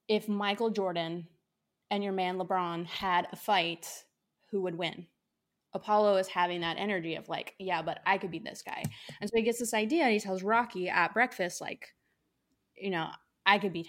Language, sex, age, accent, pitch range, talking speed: English, female, 20-39, American, 175-215 Hz, 195 wpm